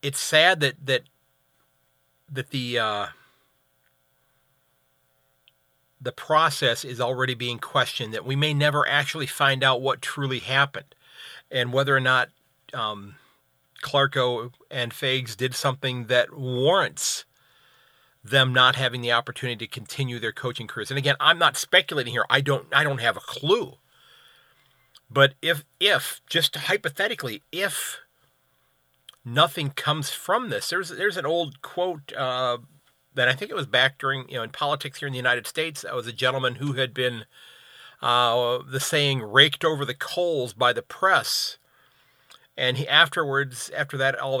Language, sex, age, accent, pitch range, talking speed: English, male, 40-59, American, 115-140 Hz, 155 wpm